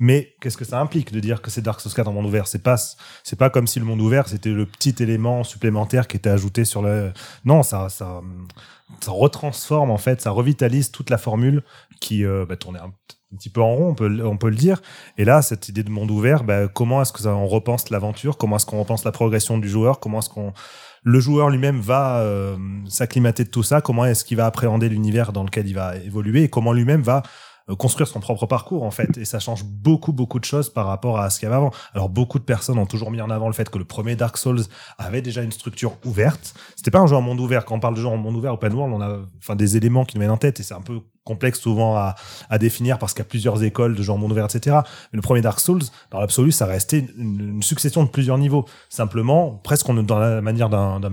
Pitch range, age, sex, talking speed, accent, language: 105-130 Hz, 30-49, male, 265 wpm, French, French